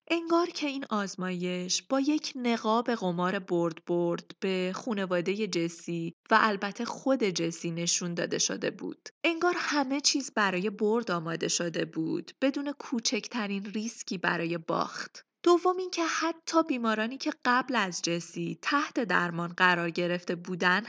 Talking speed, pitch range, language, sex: 140 wpm, 180-255 Hz, Persian, female